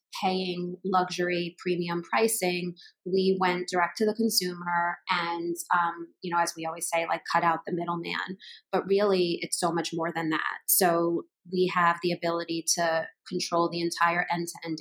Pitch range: 165-180 Hz